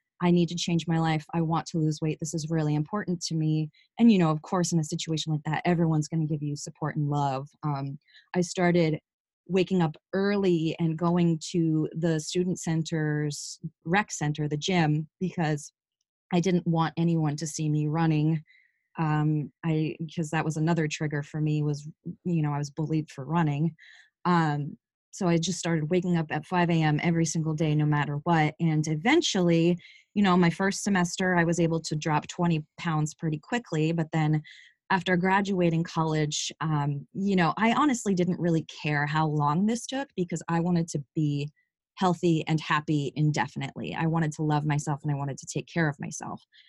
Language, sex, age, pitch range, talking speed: English, female, 20-39, 155-175 Hz, 190 wpm